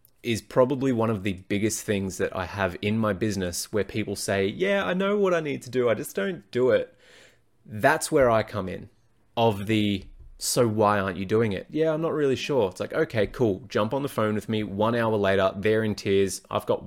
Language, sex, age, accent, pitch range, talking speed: English, male, 20-39, Australian, 100-120 Hz, 230 wpm